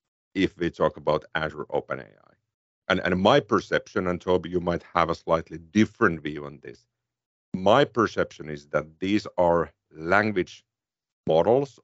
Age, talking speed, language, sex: 50-69, 145 wpm, English, male